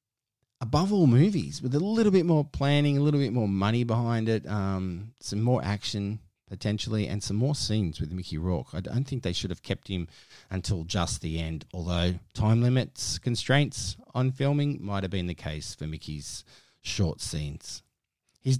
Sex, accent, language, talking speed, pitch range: male, Australian, English, 180 wpm, 90-130 Hz